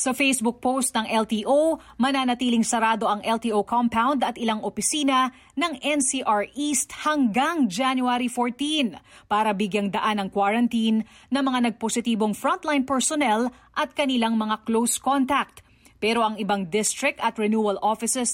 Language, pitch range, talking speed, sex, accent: English, 220-270 Hz, 135 wpm, female, Filipino